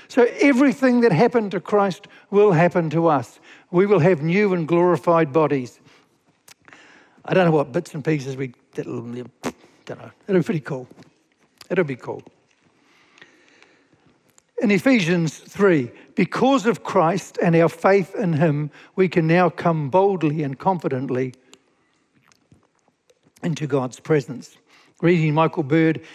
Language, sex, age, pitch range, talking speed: English, male, 60-79, 155-200 Hz, 135 wpm